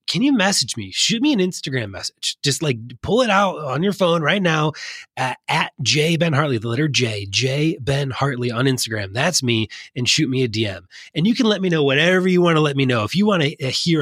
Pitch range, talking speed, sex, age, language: 115-170 Hz, 245 wpm, male, 20-39, English